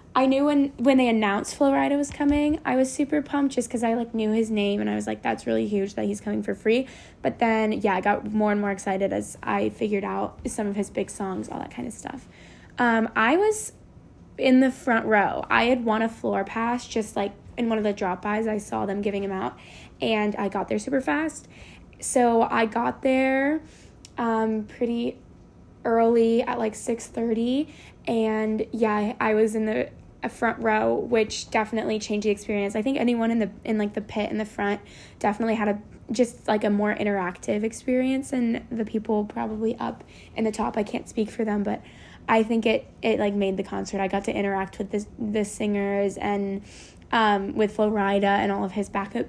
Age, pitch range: 10-29, 205-235 Hz